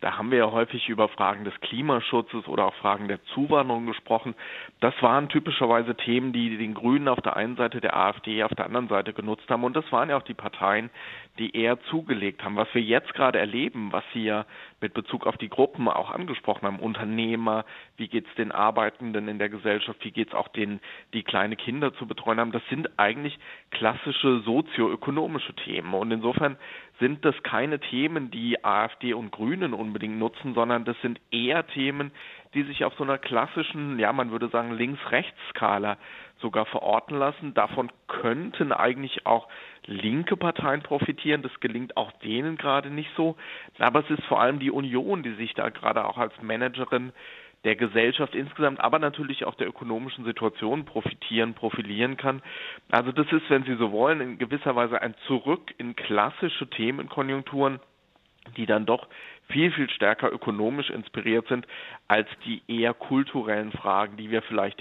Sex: male